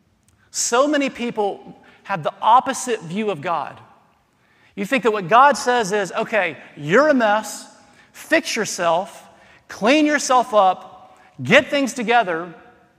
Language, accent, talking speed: English, American, 130 wpm